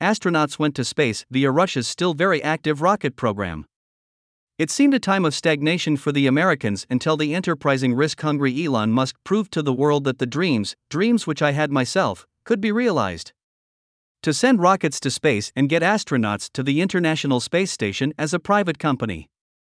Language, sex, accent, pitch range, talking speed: English, male, American, 130-175 Hz, 175 wpm